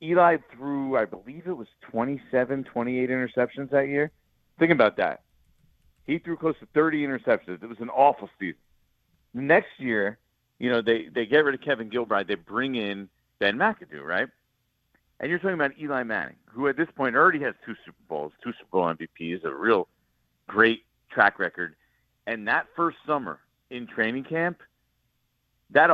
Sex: male